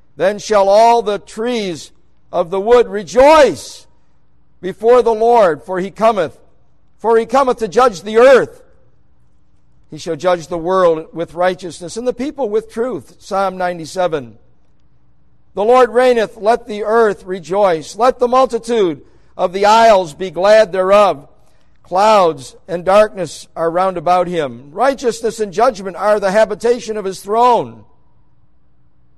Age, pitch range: 60-79, 130-220 Hz